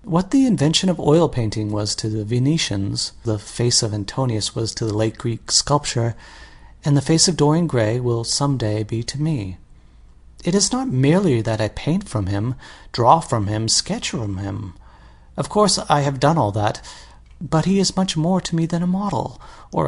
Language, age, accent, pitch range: Korean, 30-49, American, 115-165 Hz